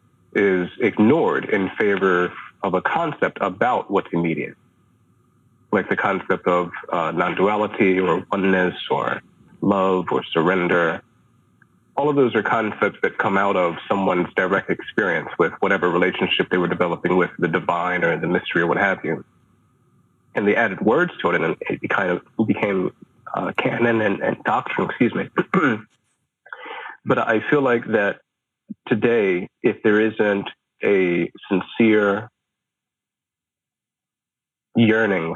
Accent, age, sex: American, 30-49, male